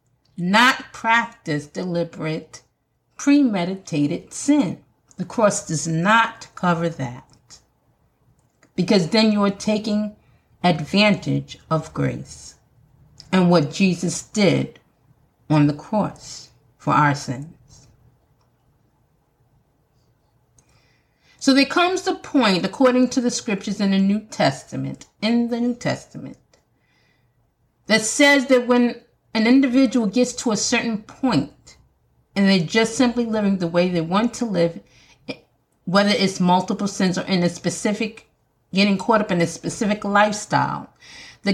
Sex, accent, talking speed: female, American, 120 wpm